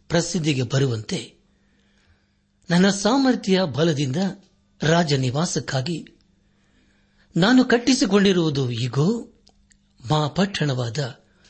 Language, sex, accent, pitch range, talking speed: Kannada, male, native, 125-185 Hz, 65 wpm